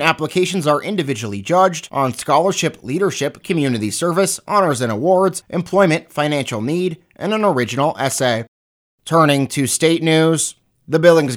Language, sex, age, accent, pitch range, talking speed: English, male, 30-49, American, 130-165 Hz, 130 wpm